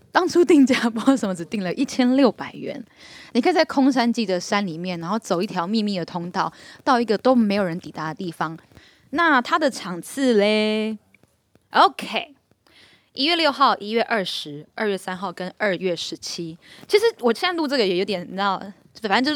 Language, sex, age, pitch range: Chinese, female, 10-29, 185-255 Hz